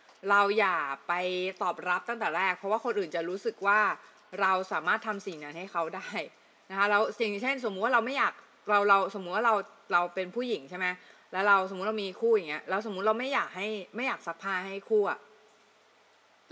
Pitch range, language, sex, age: 190-230 Hz, Thai, female, 20-39